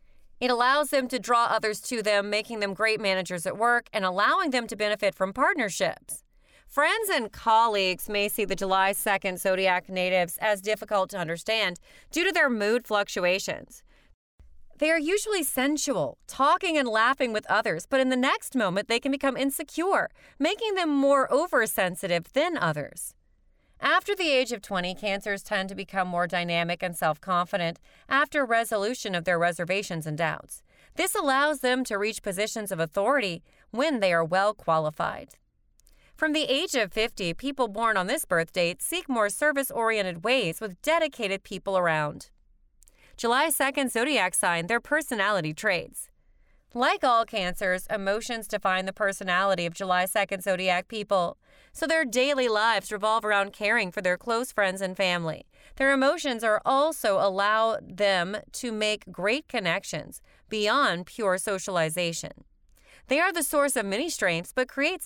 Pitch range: 185-270 Hz